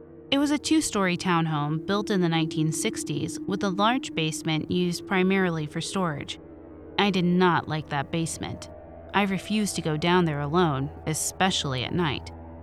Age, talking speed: 30-49, 155 wpm